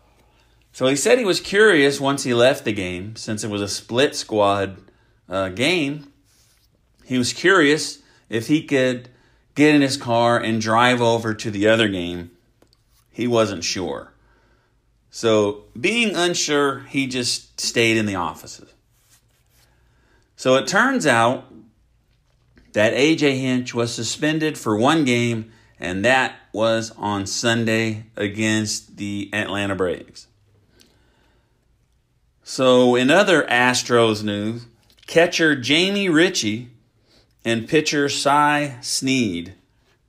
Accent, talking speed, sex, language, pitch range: American, 120 wpm, male, English, 110-135 Hz